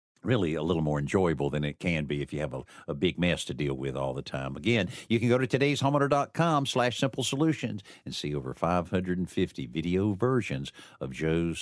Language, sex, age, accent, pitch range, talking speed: English, male, 50-69, American, 80-115 Hz, 200 wpm